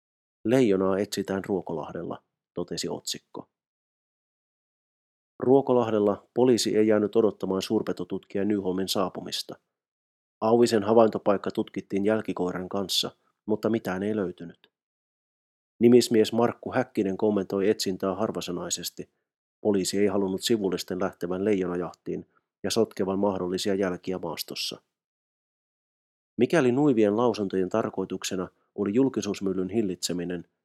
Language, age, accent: Finnish, 30-49, native